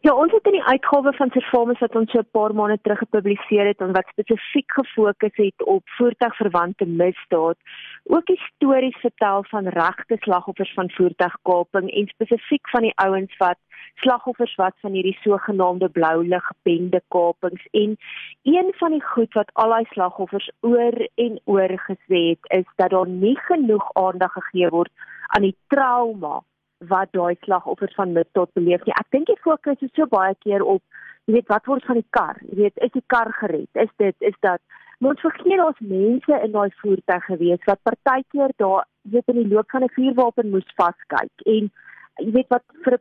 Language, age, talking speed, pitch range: German, 30-49, 185 wpm, 190-245 Hz